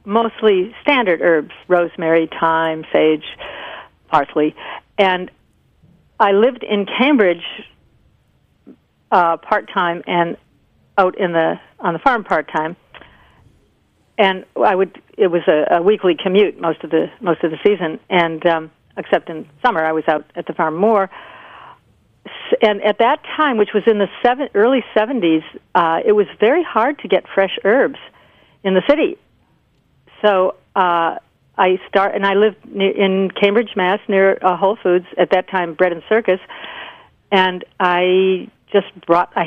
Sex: female